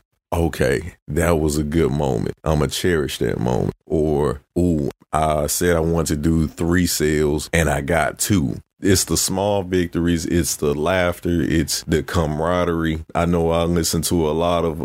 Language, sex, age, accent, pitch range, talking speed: English, male, 30-49, American, 75-85 Hz, 180 wpm